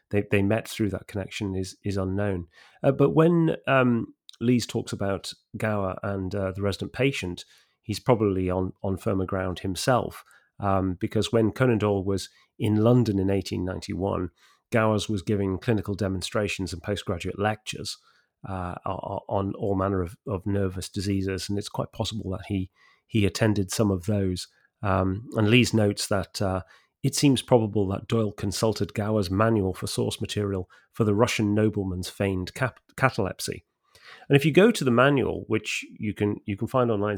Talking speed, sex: 170 wpm, male